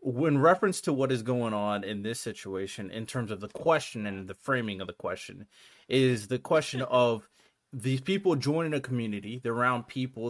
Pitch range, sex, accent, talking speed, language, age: 110-130 Hz, male, American, 190 wpm, English, 30-49